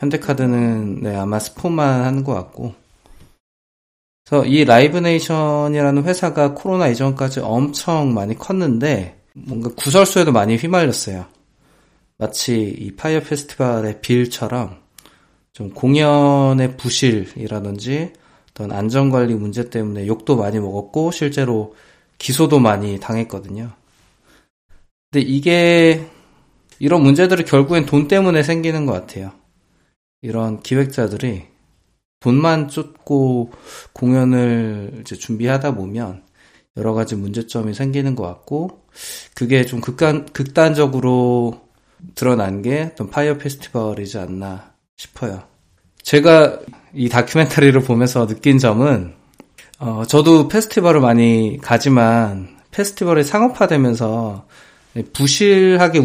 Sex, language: male, Korean